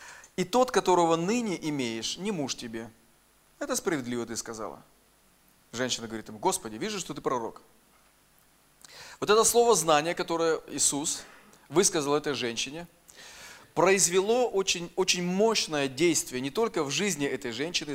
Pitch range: 135-180 Hz